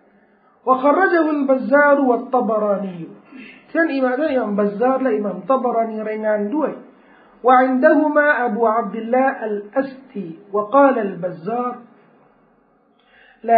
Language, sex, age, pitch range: Thai, male, 50-69, 205-280 Hz